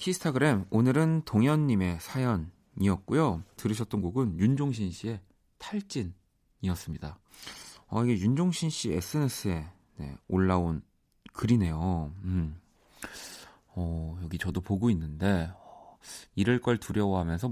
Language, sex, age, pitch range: Korean, male, 40-59, 90-120 Hz